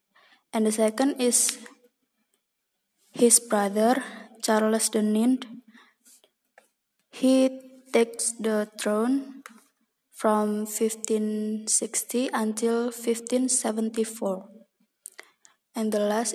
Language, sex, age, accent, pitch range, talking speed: English, female, 20-39, Indonesian, 220-240 Hz, 55 wpm